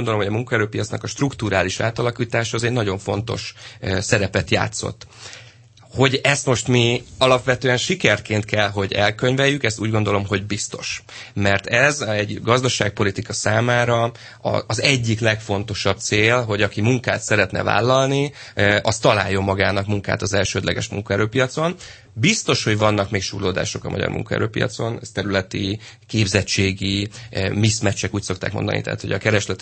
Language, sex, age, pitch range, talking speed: Hungarian, male, 30-49, 100-120 Hz, 135 wpm